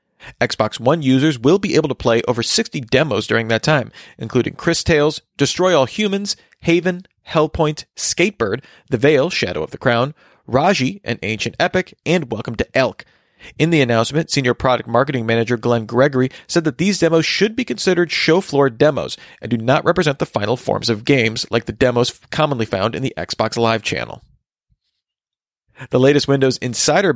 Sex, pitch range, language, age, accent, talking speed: male, 120-155 Hz, English, 40-59, American, 175 wpm